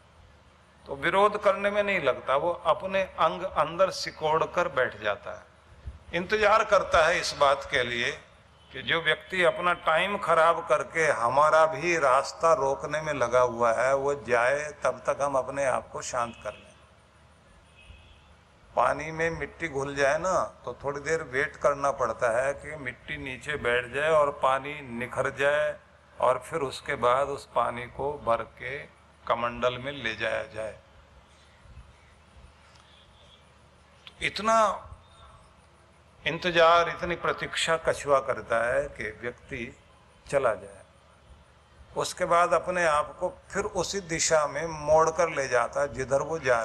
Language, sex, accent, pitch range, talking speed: Hindi, male, native, 100-160 Hz, 145 wpm